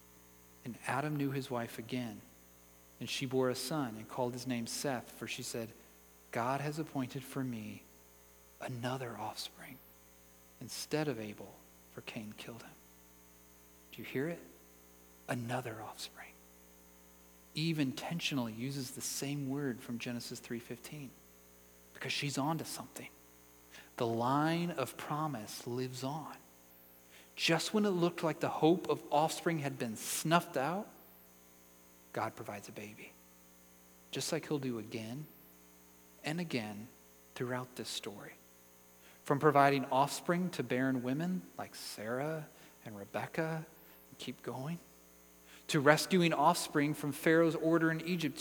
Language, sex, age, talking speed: English, male, 40-59, 135 wpm